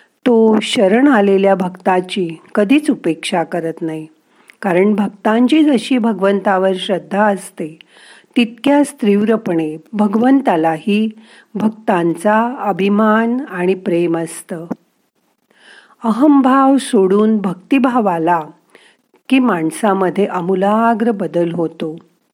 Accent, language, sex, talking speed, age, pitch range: native, Marathi, female, 85 wpm, 50-69, 175-235 Hz